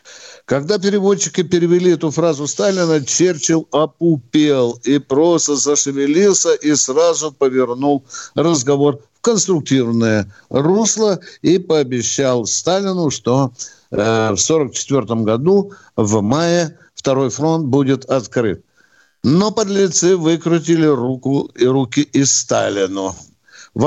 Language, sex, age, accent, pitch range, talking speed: Russian, male, 60-79, native, 120-165 Hz, 105 wpm